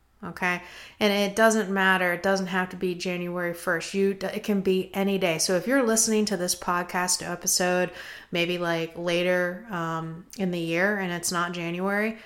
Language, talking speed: English, 180 wpm